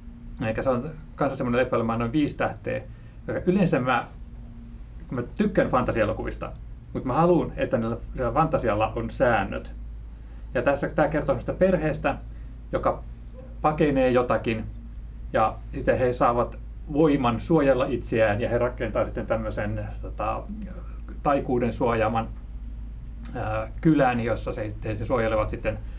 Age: 30-49